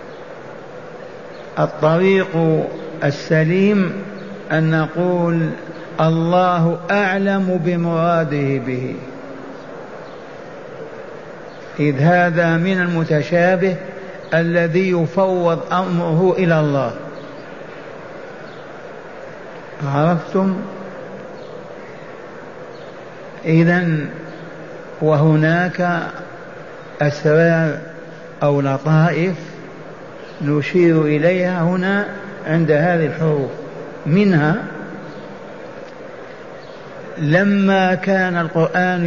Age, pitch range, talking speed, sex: 50-69, 155-190 Hz, 50 wpm, male